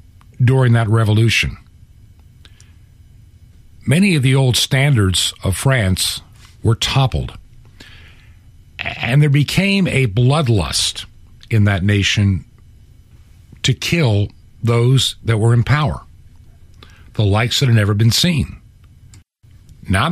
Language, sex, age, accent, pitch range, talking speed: English, male, 50-69, American, 90-120 Hz, 105 wpm